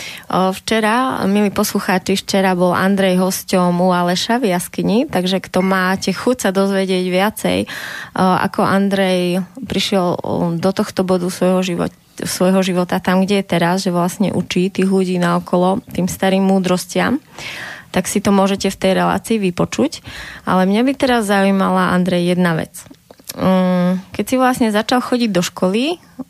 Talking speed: 145 wpm